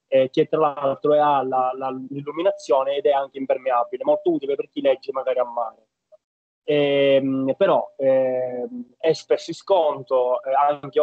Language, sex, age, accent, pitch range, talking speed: Italian, male, 20-39, native, 130-160 Hz, 150 wpm